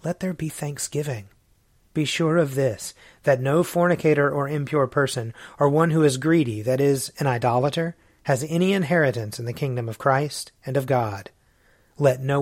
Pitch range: 125-155 Hz